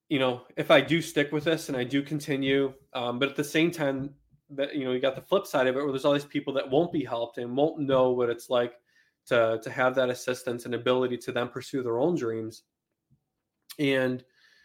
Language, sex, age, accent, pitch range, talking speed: English, male, 20-39, American, 130-155 Hz, 235 wpm